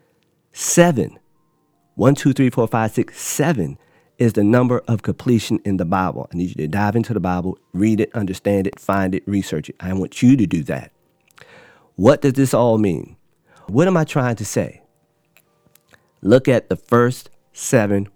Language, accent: English, American